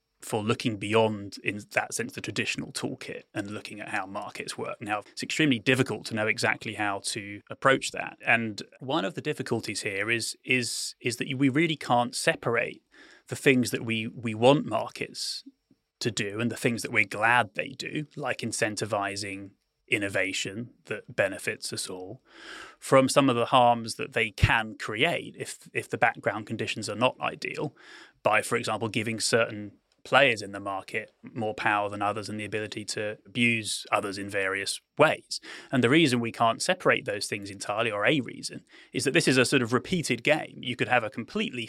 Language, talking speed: English, 185 wpm